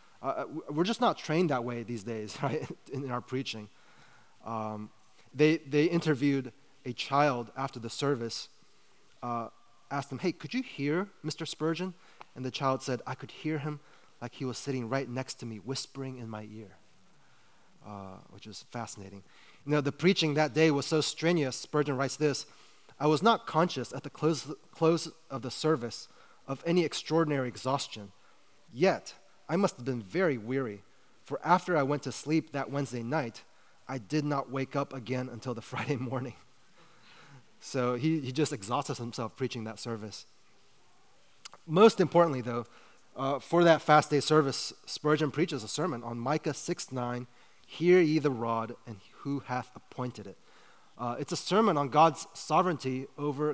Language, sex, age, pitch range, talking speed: English, male, 30-49, 120-155 Hz, 170 wpm